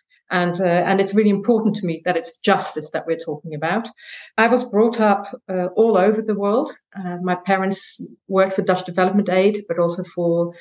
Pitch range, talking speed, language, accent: 180-220 Hz, 205 wpm, English, British